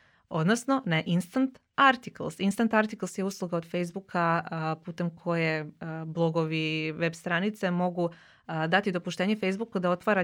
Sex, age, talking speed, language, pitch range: female, 30-49, 125 wpm, Croatian, 165-215 Hz